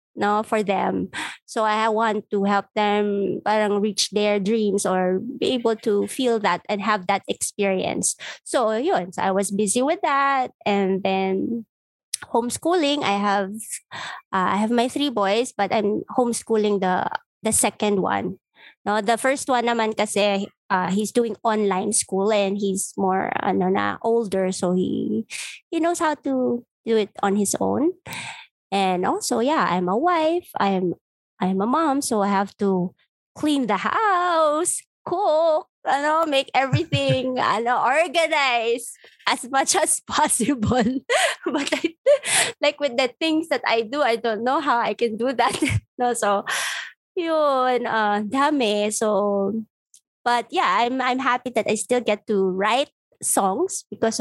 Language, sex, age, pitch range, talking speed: Filipino, female, 20-39, 200-265 Hz, 160 wpm